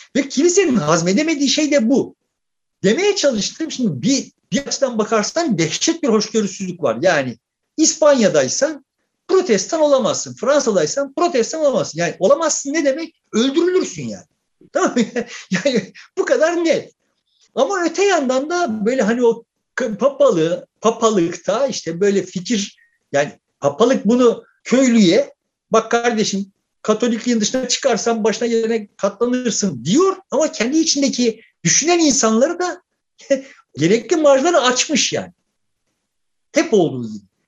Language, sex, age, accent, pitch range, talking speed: Turkish, male, 50-69, native, 200-290 Hz, 120 wpm